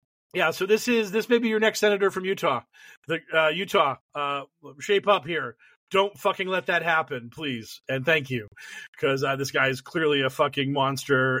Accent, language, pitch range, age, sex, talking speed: American, English, 130-165 Hz, 40-59, male, 190 wpm